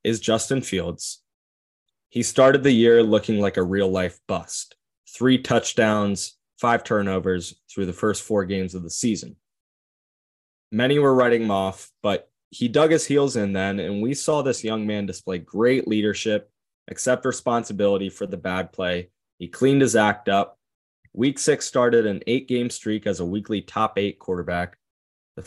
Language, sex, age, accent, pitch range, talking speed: English, male, 20-39, American, 95-120 Hz, 160 wpm